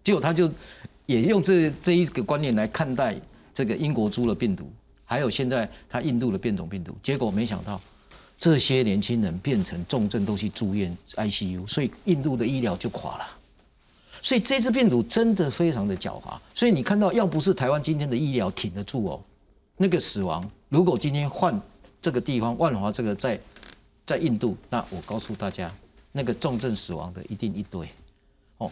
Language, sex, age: Chinese, male, 50-69